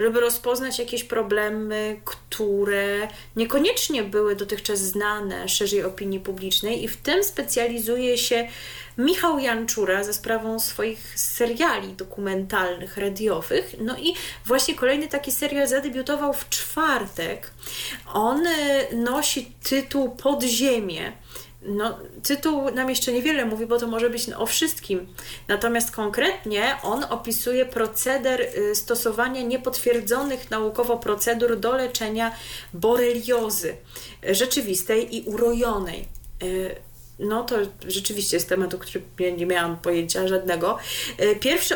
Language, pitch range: Polish, 200-255 Hz